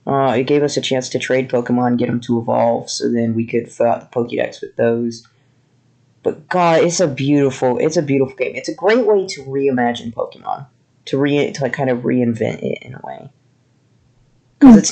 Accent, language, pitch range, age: American, English, 125-155 Hz, 20-39